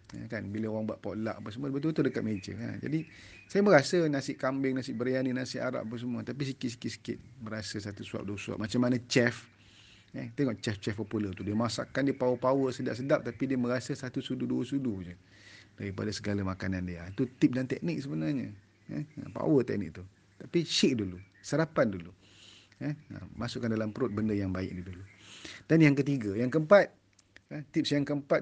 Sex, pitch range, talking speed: male, 100-140 Hz, 185 wpm